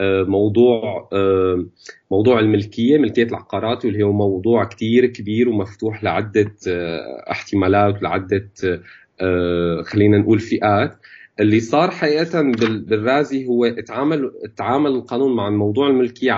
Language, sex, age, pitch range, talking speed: Arabic, male, 30-49, 95-120 Hz, 100 wpm